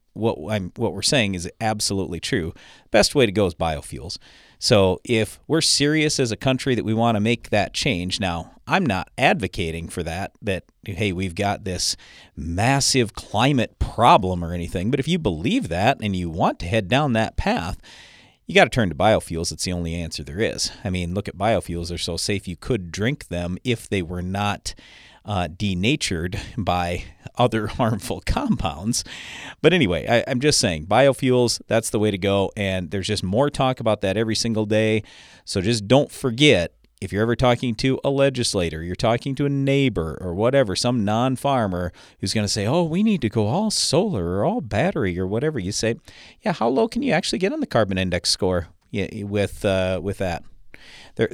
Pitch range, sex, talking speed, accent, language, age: 90-120 Hz, male, 195 wpm, American, English, 40-59